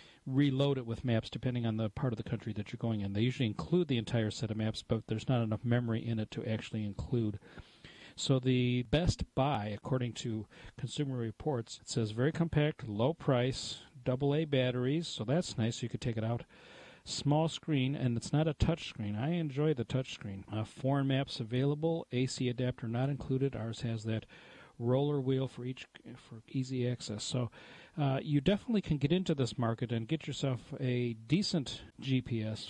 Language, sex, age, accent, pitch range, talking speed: English, male, 40-59, American, 115-145 Hz, 190 wpm